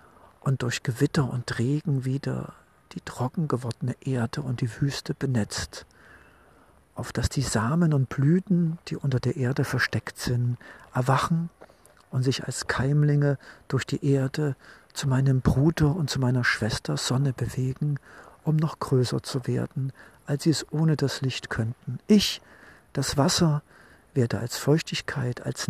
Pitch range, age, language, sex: 125-150 Hz, 50-69, German, male